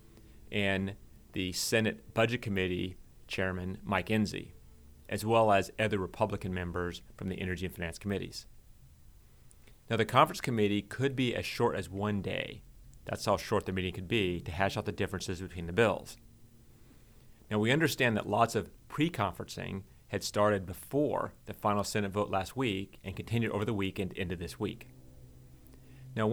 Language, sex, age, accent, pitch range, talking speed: English, male, 30-49, American, 95-115 Hz, 160 wpm